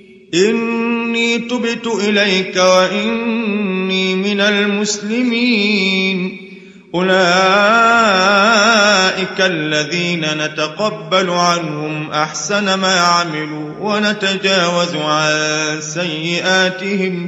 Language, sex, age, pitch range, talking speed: Arabic, male, 30-49, 175-205 Hz, 55 wpm